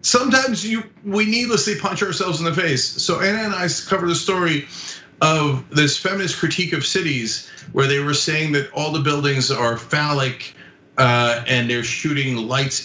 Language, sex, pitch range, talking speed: English, male, 145-205 Hz, 170 wpm